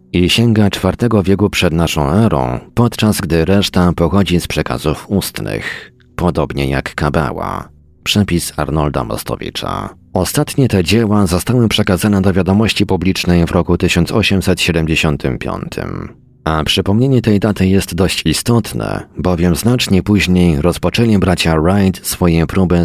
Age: 40-59